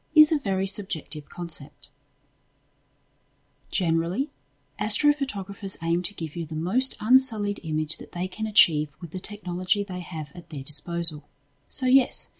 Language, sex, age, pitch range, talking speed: English, female, 40-59, 155-235 Hz, 140 wpm